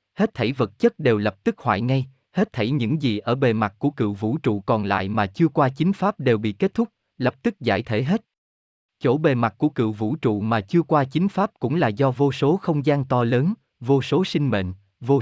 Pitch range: 110-165 Hz